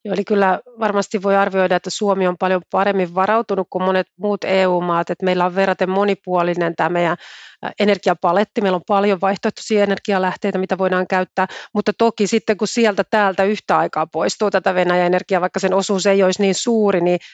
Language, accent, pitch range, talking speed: Finnish, native, 180-200 Hz, 170 wpm